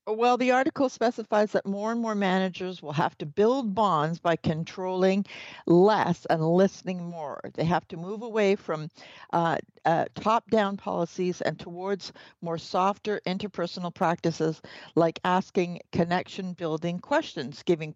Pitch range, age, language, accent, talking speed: 170-215 Hz, 60-79, English, American, 135 wpm